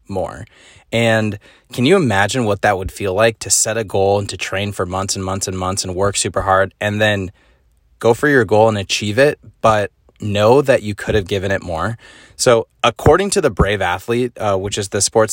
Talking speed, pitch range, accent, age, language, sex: 220 wpm, 100-120 Hz, American, 20-39, English, male